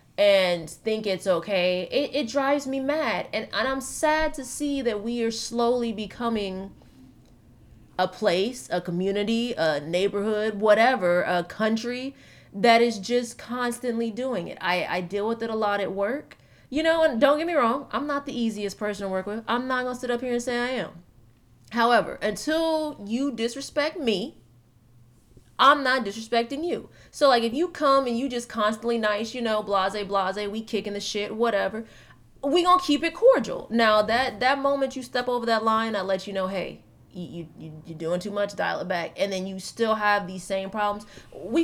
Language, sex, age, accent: English, female, 20-39, American